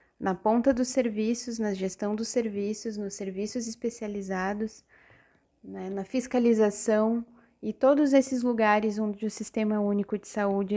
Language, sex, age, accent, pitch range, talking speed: Portuguese, female, 10-29, Brazilian, 200-245 Hz, 135 wpm